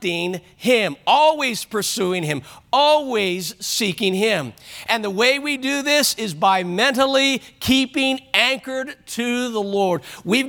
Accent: American